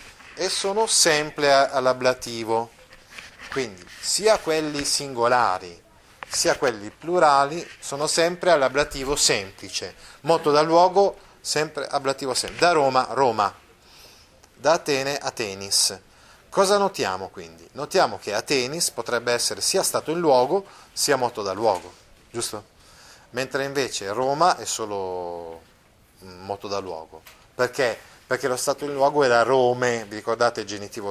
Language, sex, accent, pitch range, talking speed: Italian, male, native, 110-155 Hz, 125 wpm